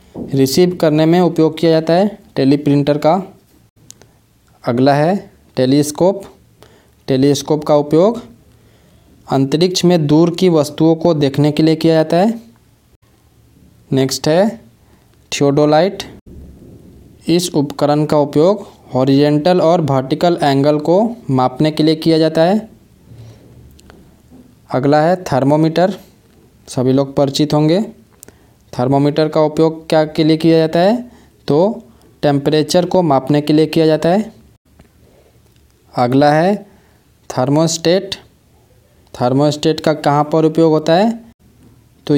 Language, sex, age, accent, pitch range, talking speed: English, male, 20-39, Indian, 140-170 Hz, 115 wpm